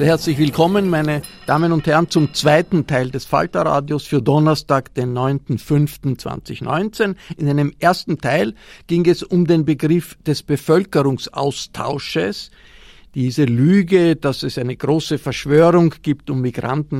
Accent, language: Austrian, German